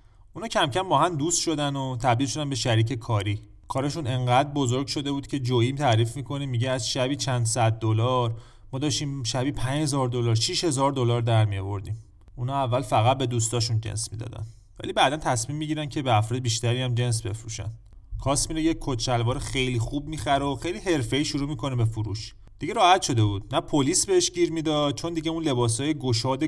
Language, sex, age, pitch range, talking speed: Persian, male, 30-49, 110-140 Hz, 185 wpm